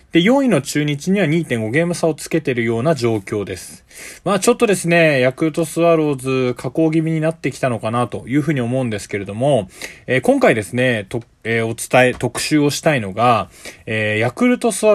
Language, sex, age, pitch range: Japanese, male, 20-39, 120-185 Hz